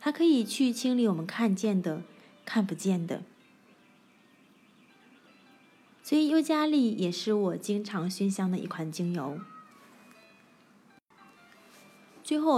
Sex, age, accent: female, 20-39, native